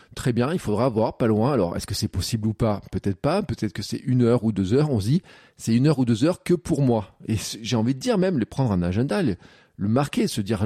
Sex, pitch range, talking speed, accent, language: male, 105-135 Hz, 280 wpm, French, French